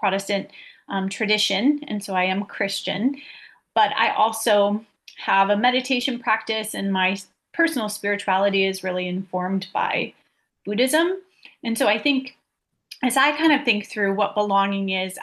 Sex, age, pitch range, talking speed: female, 30-49, 190-220 Hz, 145 wpm